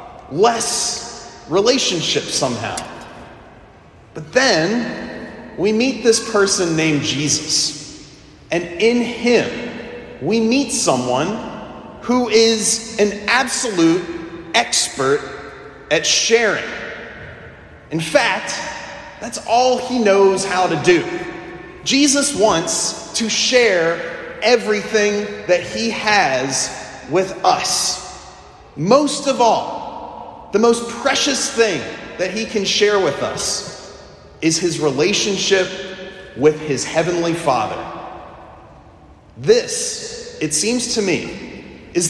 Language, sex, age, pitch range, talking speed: English, male, 30-49, 190-245 Hz, 100 wpm